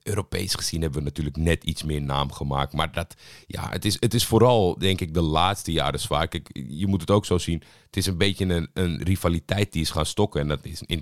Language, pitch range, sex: Dutch, 80-105 Hz, male